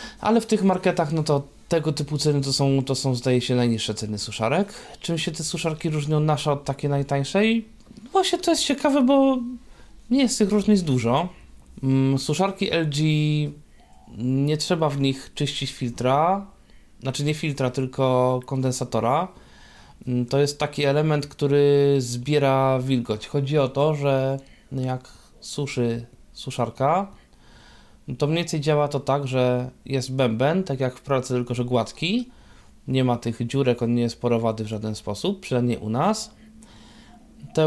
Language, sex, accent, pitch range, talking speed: Polish, male, native, 125-160 Hz, 150 wpm